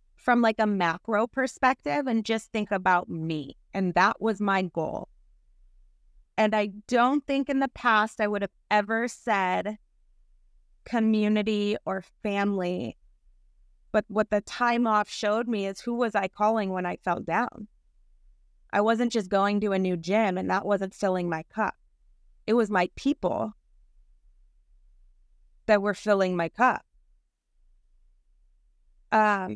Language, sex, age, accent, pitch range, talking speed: English, female, 30-49, American, 180-230 Hz, 140 wpm